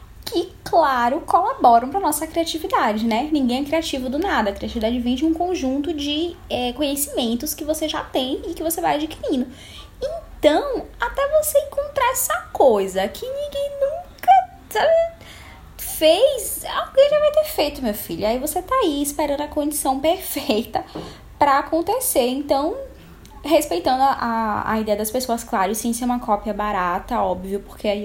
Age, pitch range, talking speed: 10-29, 235-335 Hz, 165 wpm